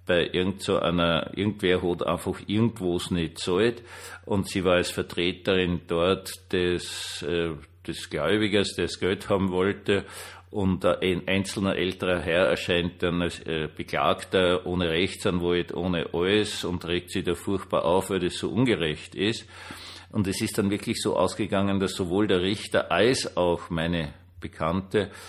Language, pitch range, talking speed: German, 90-105 Hz, 155 wpm